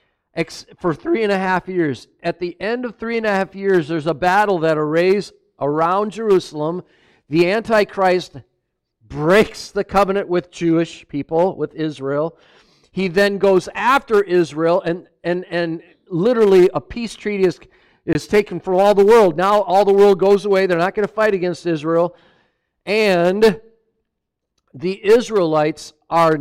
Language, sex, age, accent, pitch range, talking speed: English, male, 50-69, American, 155-200 Hz, 155 wpm